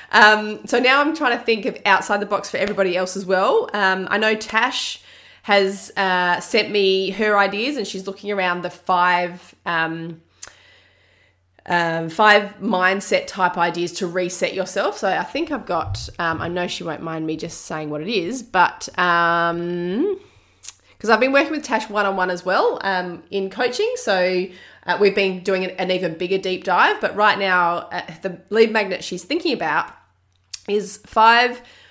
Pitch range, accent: 175-210 Hz, Australian